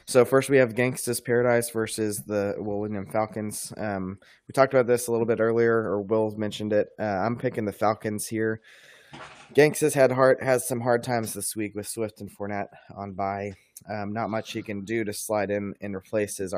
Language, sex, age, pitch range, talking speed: English, male, 20-39, 100-115 Hz, 205 wpm